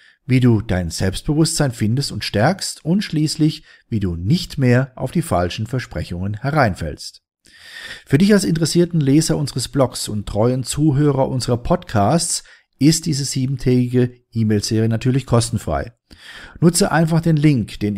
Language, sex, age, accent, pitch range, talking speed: German, male, 40-59, German, 105-150 Hz, 135 wpm